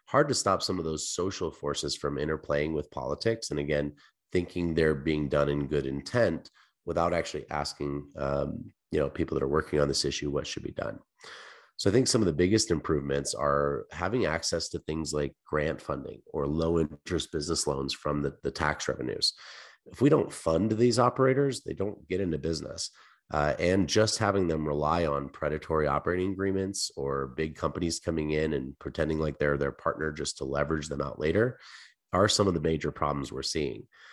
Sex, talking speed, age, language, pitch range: male, 195 wpm, 30-49, English, 75-90 Hz